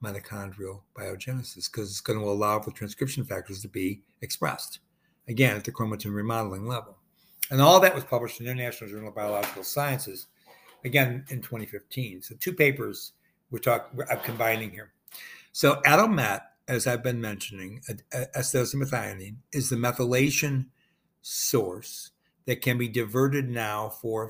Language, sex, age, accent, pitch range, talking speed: English, male, 60-79, American, 115-140 Hz, 160 wpm